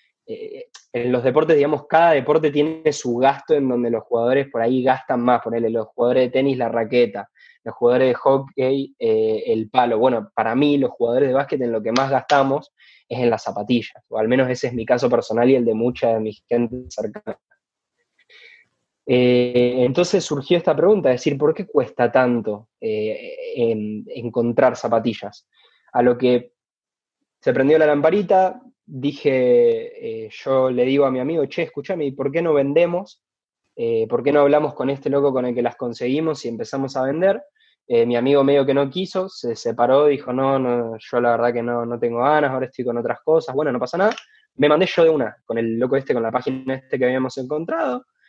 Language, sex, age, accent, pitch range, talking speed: Spanish, male, 20-39, Argentinian, 120-160 Hz, 200 wpm